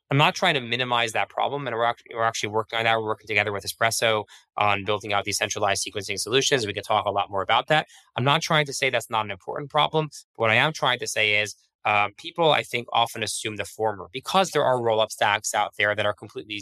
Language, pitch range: English, 105-135 Hz